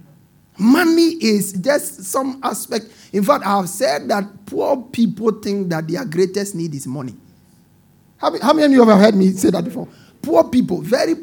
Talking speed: 185 wpm